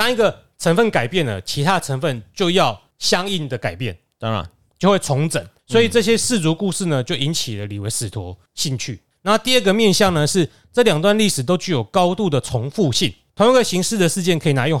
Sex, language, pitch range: male, Chinese, 125-185 Hz